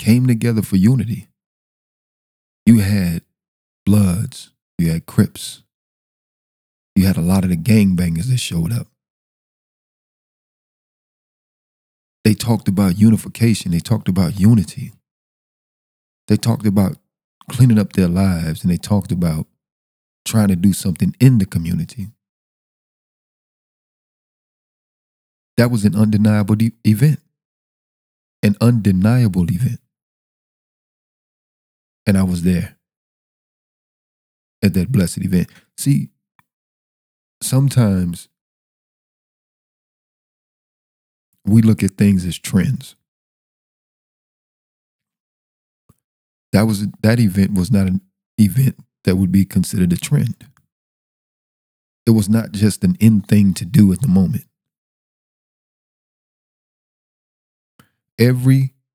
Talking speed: 100 wpm